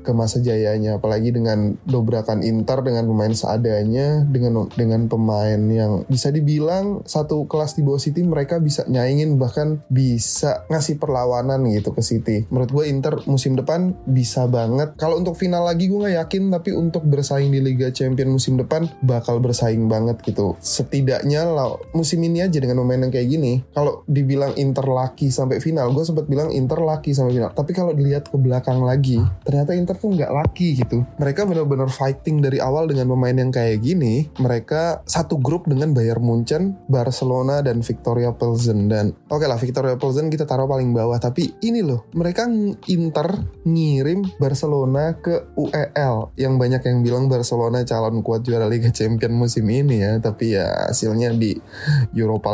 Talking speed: 170 wpm